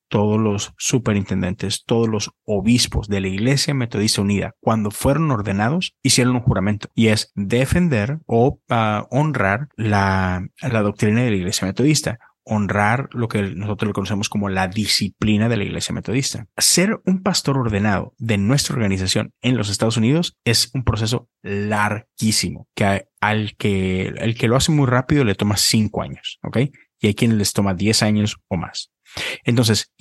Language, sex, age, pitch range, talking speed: English, male, 30-49, 105-130 Hz, 160 wpm